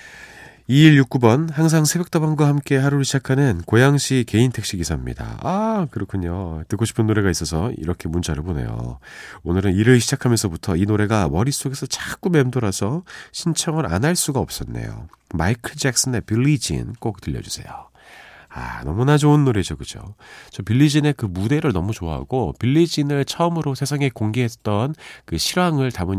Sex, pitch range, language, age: male, 85-135 Hz, Korean, 40-59